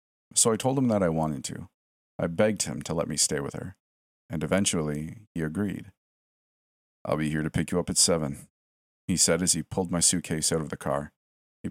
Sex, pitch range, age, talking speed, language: male, 75-95 Hz, 40-59, 215 wpm, English